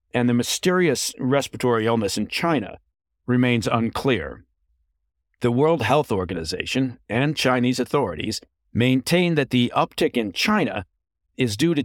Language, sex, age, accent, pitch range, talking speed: English, male, 50-69, American, 100-135 Hz, 125 wpm